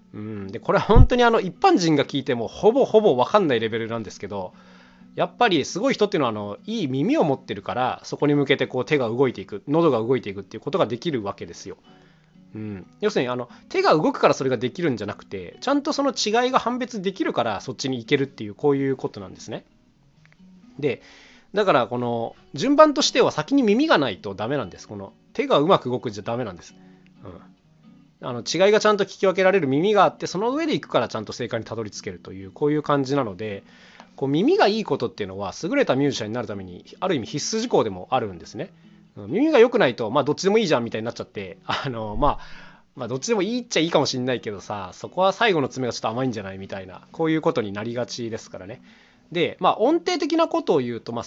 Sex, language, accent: male, Japanese, native